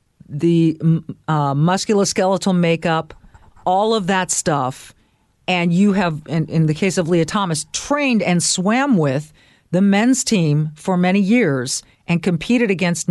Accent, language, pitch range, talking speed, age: American, English, 155-210 Hz, 140 wpm, 40-59